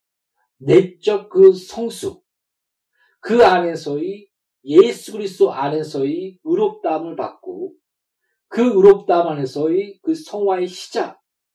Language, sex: Korean, male